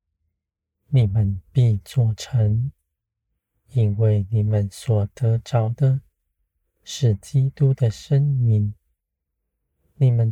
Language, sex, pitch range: Chinese, male, 75-120 Hz